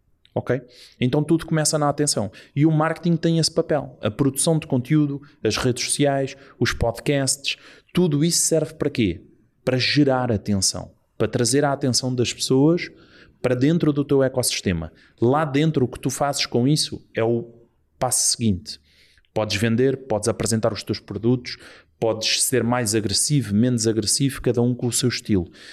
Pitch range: 115-140 Hz